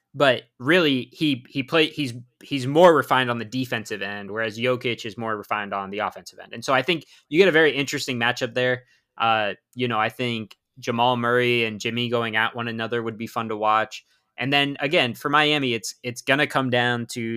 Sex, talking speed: male, 220 wpm